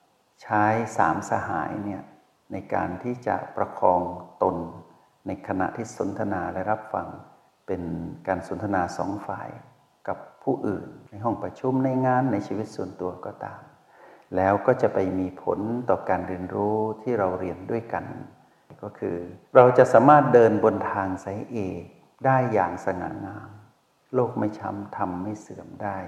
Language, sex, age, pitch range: Thai, male, 60-79, 95-115 Hz